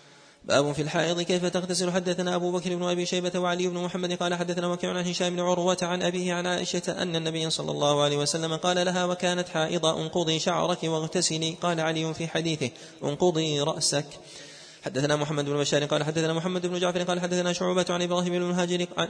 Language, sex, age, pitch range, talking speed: Arabic, male, 20-39, 155-180 Hz, 180 wpm